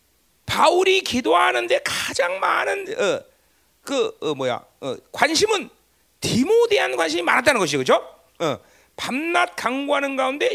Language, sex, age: Korean, male, 40-59